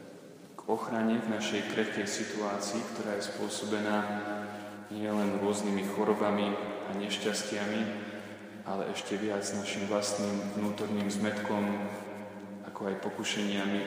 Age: 20-39